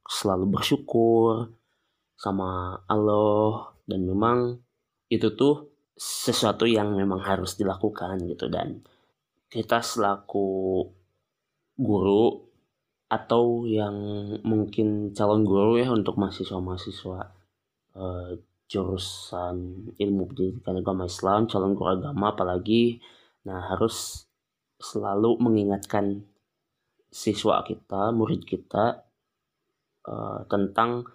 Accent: native